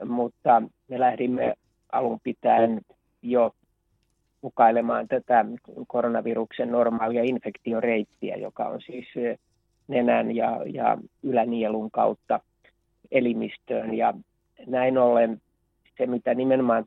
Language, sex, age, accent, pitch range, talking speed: Finnish, male, 30-49, native, 115-125 Hz, 95 wpm